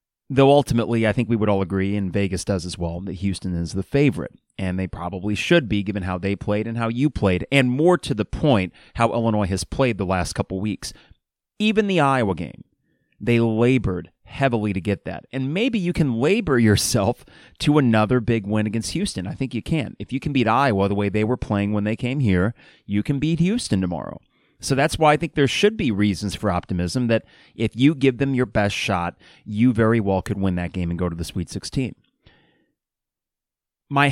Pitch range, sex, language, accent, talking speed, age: 100-140 Hz, male, English, American, 215 wpm, 30-49